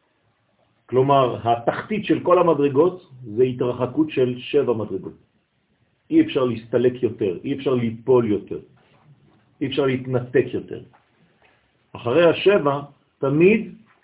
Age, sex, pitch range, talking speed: 50-69, male, 125-165 Hz, 100 wpm